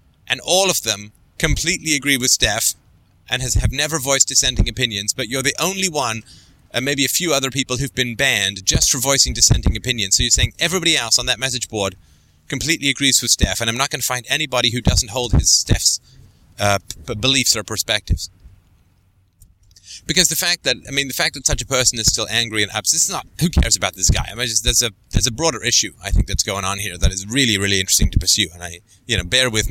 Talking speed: 235 wpm